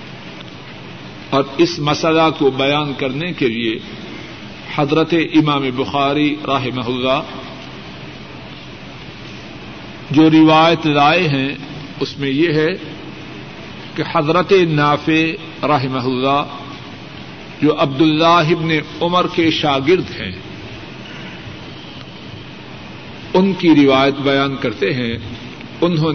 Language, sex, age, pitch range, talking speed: Urdu, male, 50-69, 140-165 Hz, 90 wpm